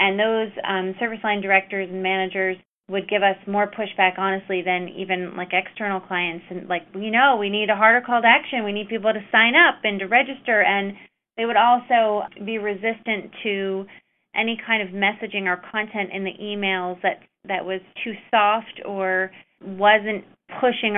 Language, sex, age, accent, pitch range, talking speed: English, female, 30-49, American, 190-220 Hz, 180 wpm